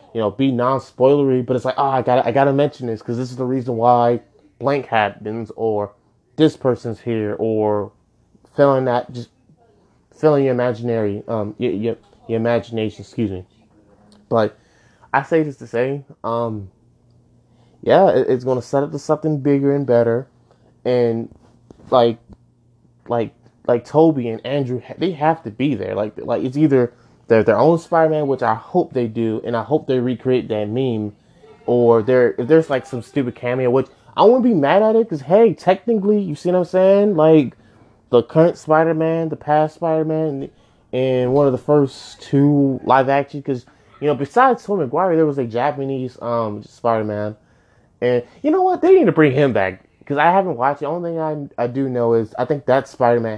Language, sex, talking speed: English, male, 190 wpm